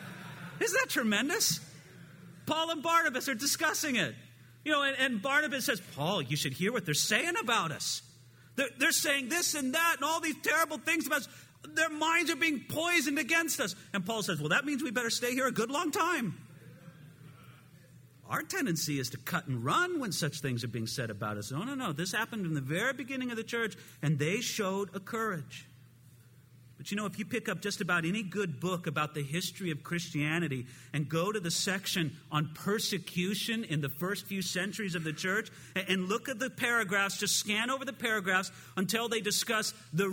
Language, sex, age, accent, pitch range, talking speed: English, male, 40-59, American, 160-265 Hz, 205 wpm